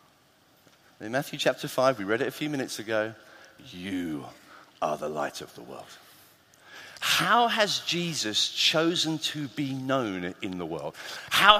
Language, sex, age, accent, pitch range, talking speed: English, male, 40-59, British, 130-215 Hz, 150 wpm